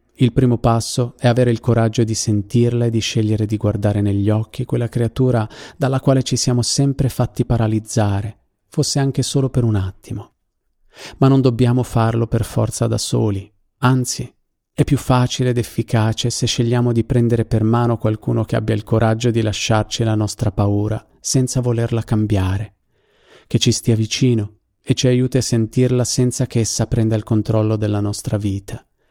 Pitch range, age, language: 105-120 Hz, 40-59, Italian